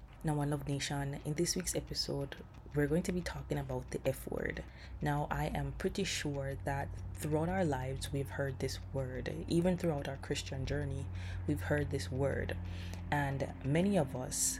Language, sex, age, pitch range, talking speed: English, female, 20-39, 135-160 Hz, 175 wpm